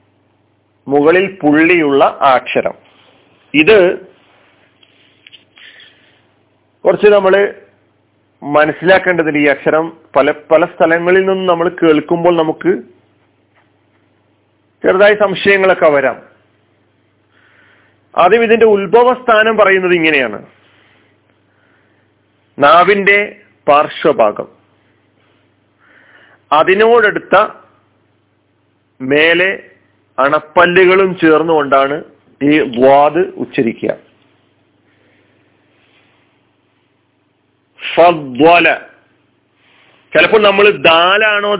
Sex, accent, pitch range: male, native, 120-185 Hz